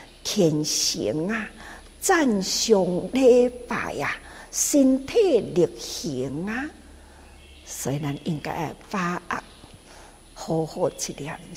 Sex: female